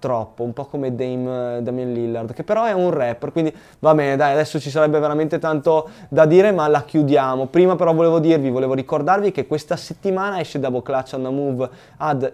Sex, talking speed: male, 190 wpm